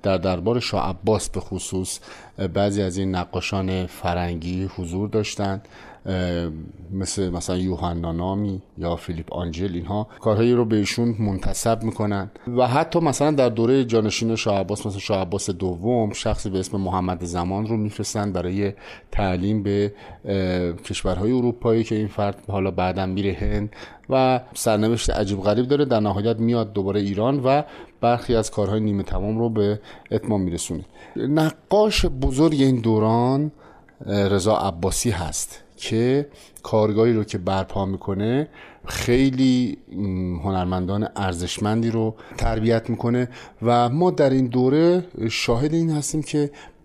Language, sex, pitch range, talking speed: Persian, male, 95-120 Hz, 135 wpm